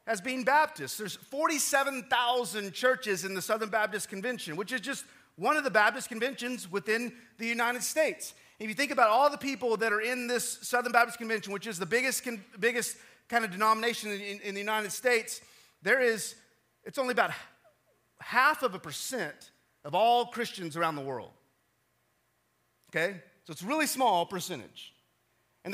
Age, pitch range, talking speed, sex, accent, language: 30-49, 170-235 Hz, 175 wpm, male, American, English